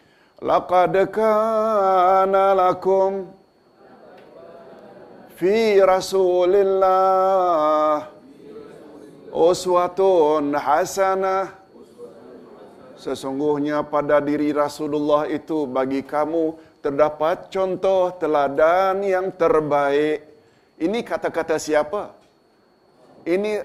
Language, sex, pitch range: Malayalam, male, 145-180 Hz